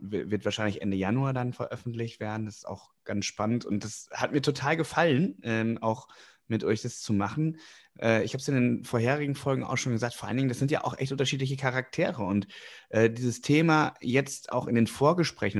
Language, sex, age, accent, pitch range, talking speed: German, male, 30-49, German, 115-140 Hz, 210 wpm